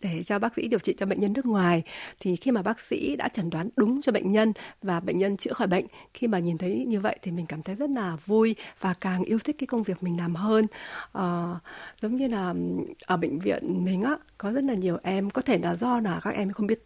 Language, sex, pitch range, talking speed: Vietnamese, female, 180-235 Hz, 265 wpm